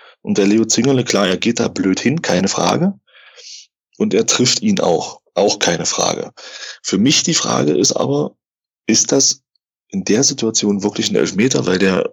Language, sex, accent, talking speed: German, male, German, 180 wpm